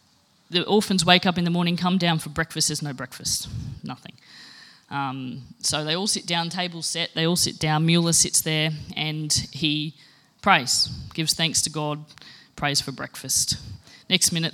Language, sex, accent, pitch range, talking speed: English, female, Australian, 145-175 Hz, 175 wpm